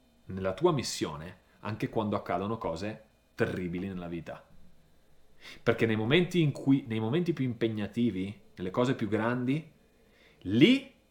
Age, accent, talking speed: 30-49, native, 130 wpm